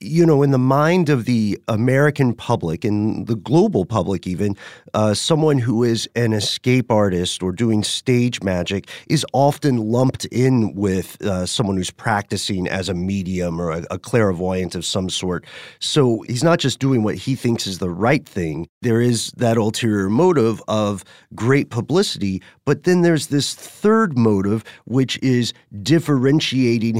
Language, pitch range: English, 100-130 Hz